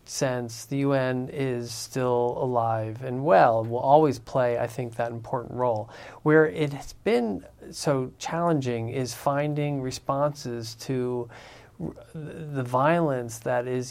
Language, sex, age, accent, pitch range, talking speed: English, male, 40-59, American, 120-140 Hz, 130 wpm